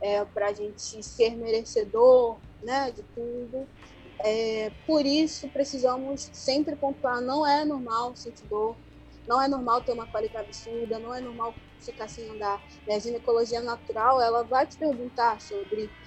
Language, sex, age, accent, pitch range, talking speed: Portuguese, female, 20-39, Brazilian, 225-270 Hz, 155 wpm